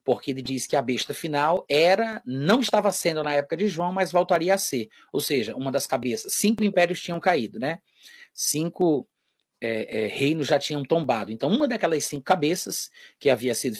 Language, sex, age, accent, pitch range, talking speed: Portuguese, male, 30-49, Brazilian, 130-175 Hz, 190 wpm